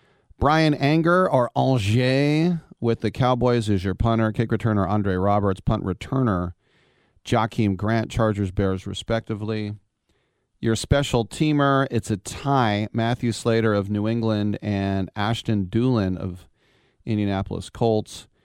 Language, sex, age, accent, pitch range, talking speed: English, male, 40-59, American, 100-120 Hz, 125 wpm